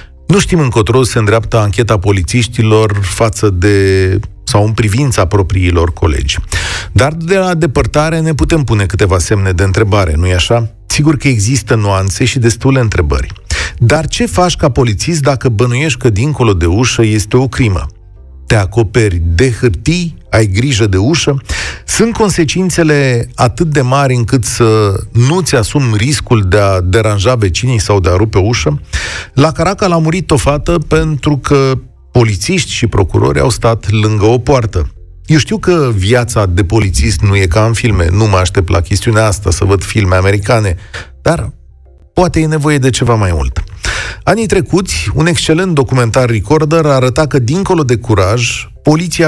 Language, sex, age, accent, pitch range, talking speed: Romanian, male, 40-59, native, 100-140 Hz, 160 wpm